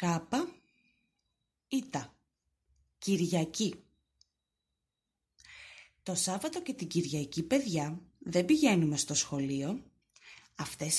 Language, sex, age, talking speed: English, female, 30-49, 75 wpm